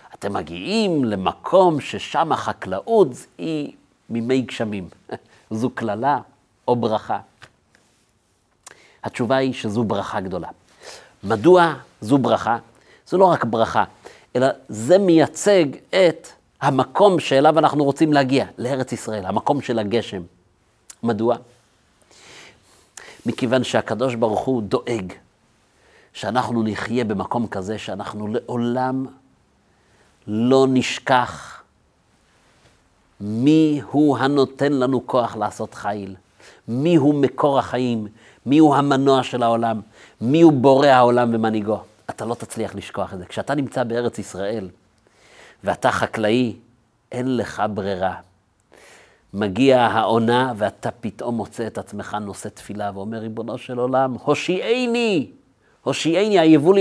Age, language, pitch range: 50-69, Hebrew, 110-140 Hz